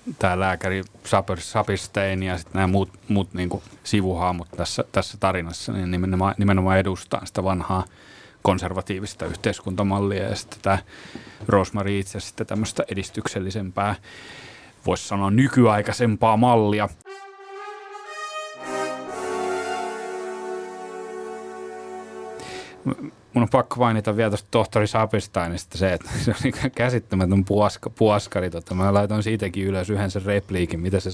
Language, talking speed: Finnish, 110 wpm